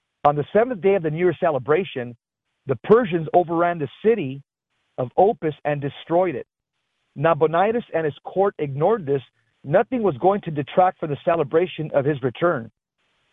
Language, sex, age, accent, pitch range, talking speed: English, male, 40-59, American, 140-185 Hz, 160 wpm